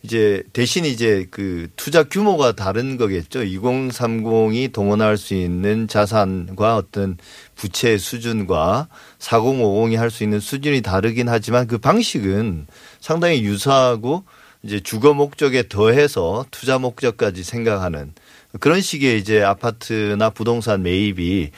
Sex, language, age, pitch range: male, Korean, 40-59, 105-145 Hz